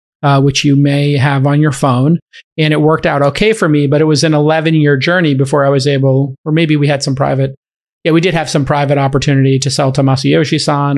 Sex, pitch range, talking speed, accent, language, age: male, 135-160 Hz, 235 wpm, American, English, 40-59